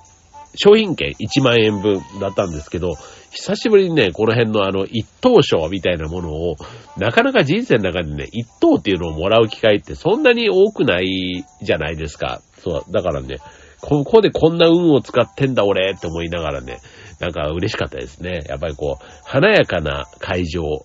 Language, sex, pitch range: Japanese, male, 85-135 Hz